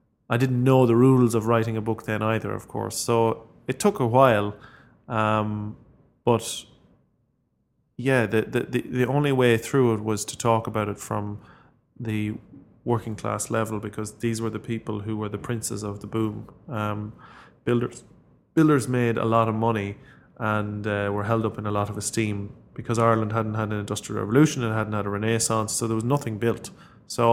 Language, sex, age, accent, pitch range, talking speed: English, male, 20-39, Irish, 110-125 Hz, 190 wpm